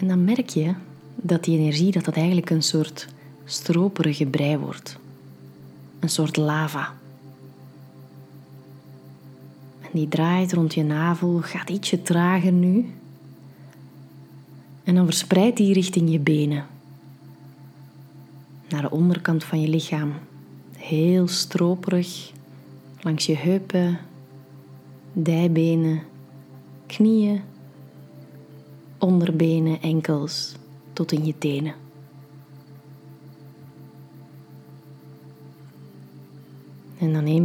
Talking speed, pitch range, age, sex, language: 90 wpm, 140-165 Hz, 20-39, female, Dutch